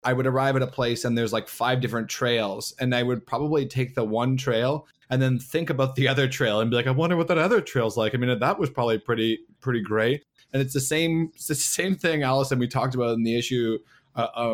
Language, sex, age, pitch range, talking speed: English, male, 20-39, 115-135 Hz, 250 wpm